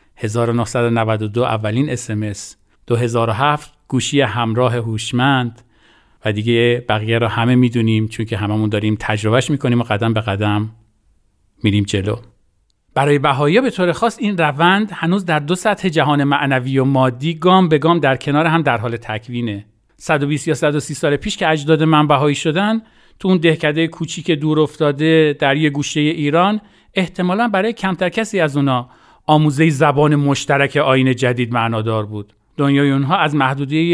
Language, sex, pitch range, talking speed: Persian, male, 120-165 Hz, 155 wpm